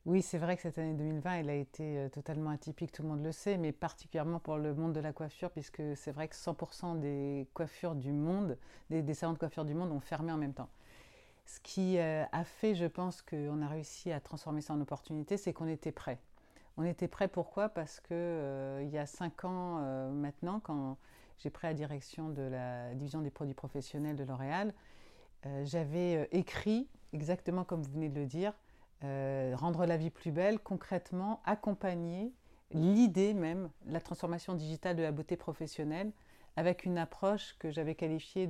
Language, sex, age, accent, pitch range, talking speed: French, female, 40-59, French, 150-180 Hz, 195 wpm